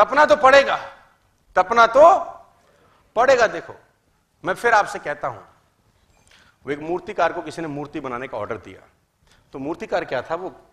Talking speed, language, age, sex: 150 wpm, Hindi, 40-59, male